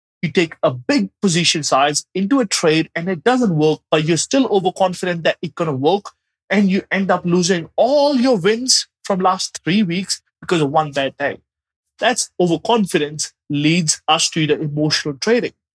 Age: 30-49